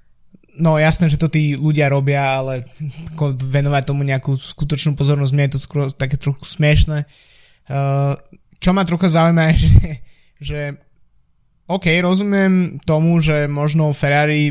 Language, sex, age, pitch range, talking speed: Slovak, male, 20-39, 145-160 Hz, 140 wpm